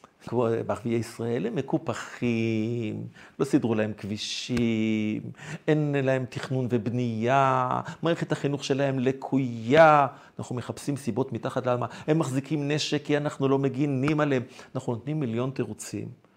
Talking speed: 120 wpm